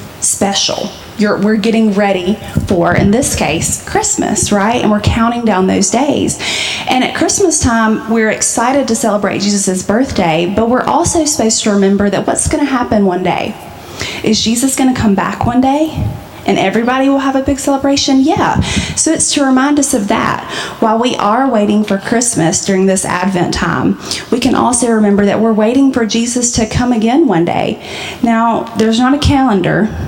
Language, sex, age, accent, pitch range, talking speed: English, female, 30-49, American, 200-250 Hz, 180 wpm